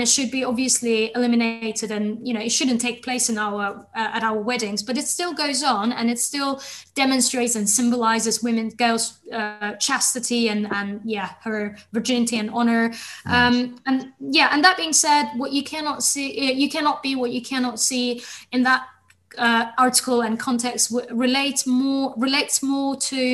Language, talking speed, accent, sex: English, 180 wpm, British, female